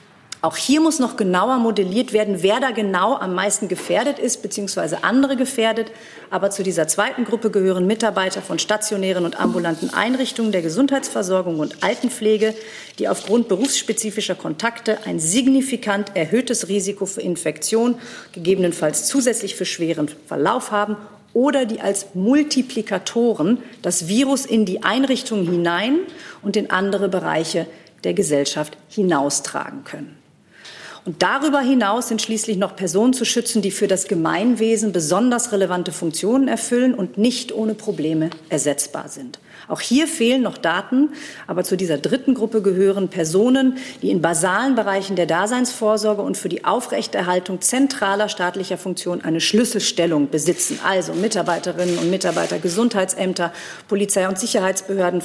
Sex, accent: female, German